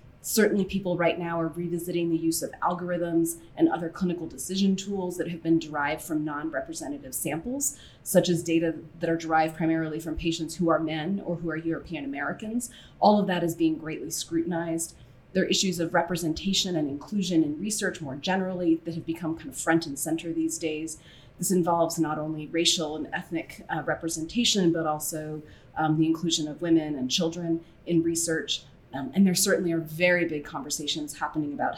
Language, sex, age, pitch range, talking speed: English, female, 30-49, 160-180 Hz, 185 wpm